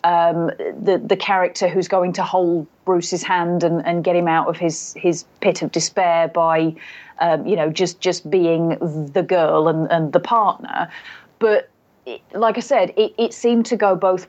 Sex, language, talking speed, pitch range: female, English, 190 wpm, 180-220 Hz